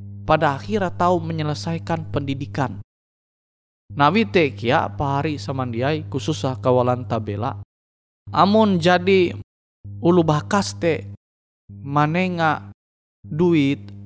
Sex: male